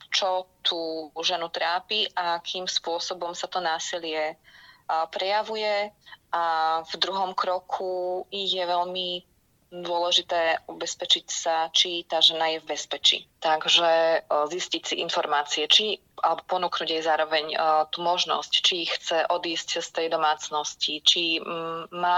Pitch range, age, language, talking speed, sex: 155-175 Hz, 20-39, Slovak, 120 wpm, female